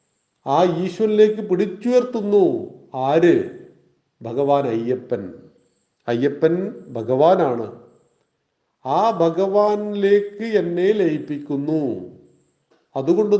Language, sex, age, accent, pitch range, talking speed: Malayalam, male, 40-59, native, 145-195 Hz, 55 wpm